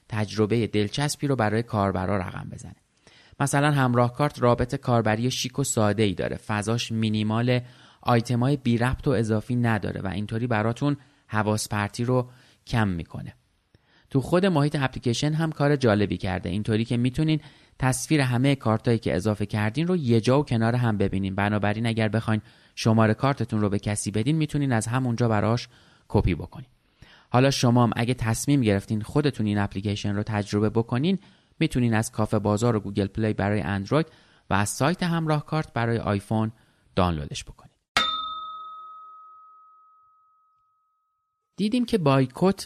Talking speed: 145 wpm